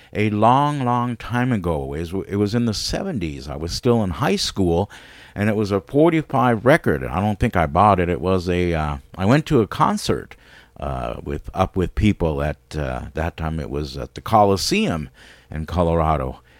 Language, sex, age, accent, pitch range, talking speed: English, male, 50-69, American, 80-115 Hz, 190 wpm